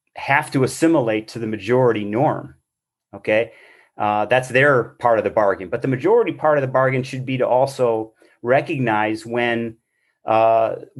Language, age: English, 30-49